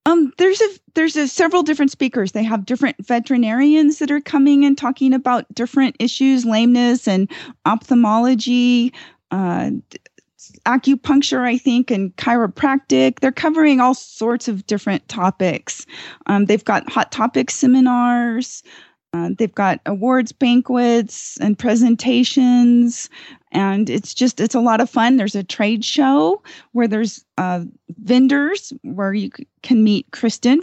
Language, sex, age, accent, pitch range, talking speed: English, female, 30-49, American, 210-260 Hz, 135 wpm